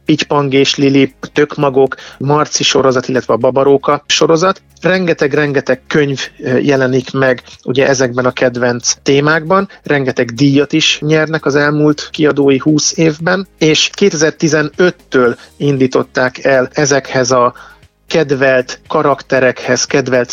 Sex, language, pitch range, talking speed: male, Hungarian, 130-155 Hz, 105 wpm